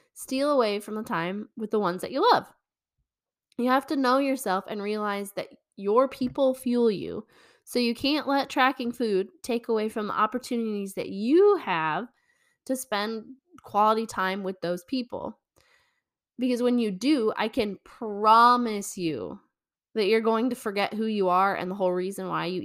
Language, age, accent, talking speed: English, 10-29, American, 170 wpm